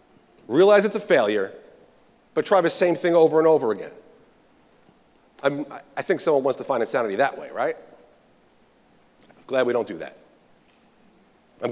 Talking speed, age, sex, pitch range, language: 155 wpm, 40-59, male, 155-195 Hz, English